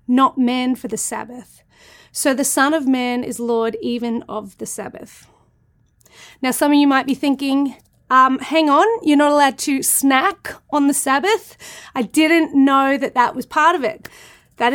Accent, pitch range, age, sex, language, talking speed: Australian, 250-315 Hz, 30-49, female, English, 180 wpm